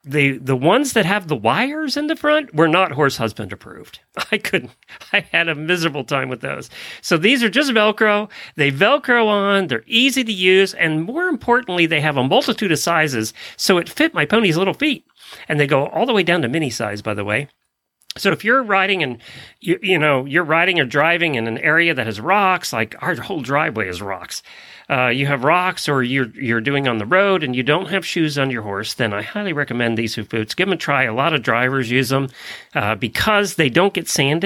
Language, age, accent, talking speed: English, 40-59, American, 230 wpm